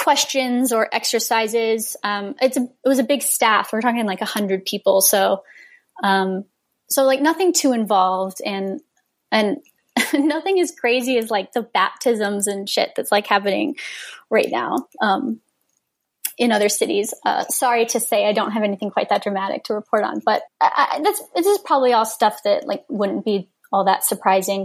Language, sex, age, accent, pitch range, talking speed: English, female, 20-39, American, 200-255 Hz, 175 wpm